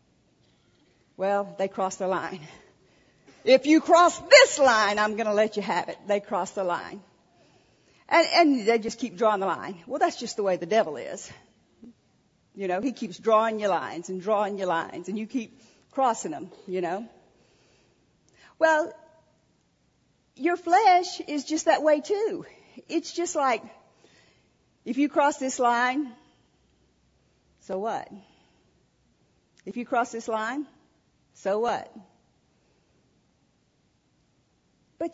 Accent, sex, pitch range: American, female, 210-300 Hz